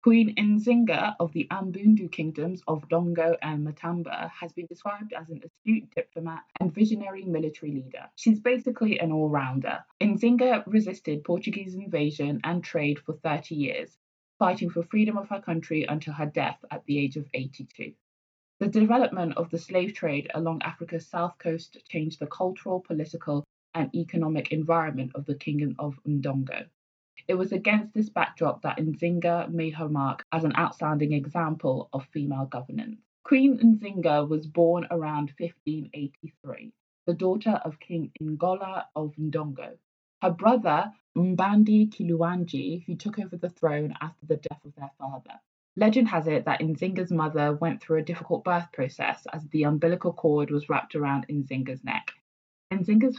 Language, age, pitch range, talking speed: English, 20-39, 150-185 Hz, 155 wpm